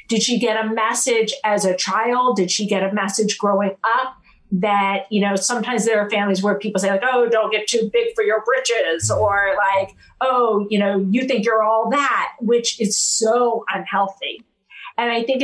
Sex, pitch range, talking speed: female, 195-230 Hz, 200 wpm